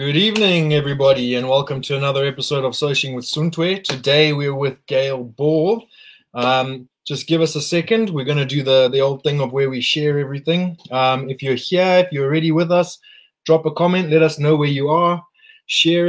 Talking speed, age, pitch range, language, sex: 205 wpm, 20-39, 125-160 Hz, English, male